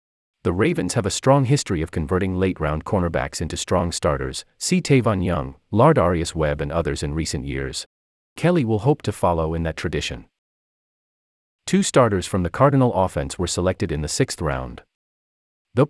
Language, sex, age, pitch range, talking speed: English, male, 40-59, 75-120 Hz, 165 wpm